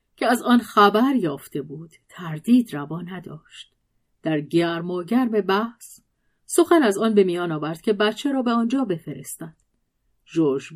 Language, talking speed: Persian, 150 wpm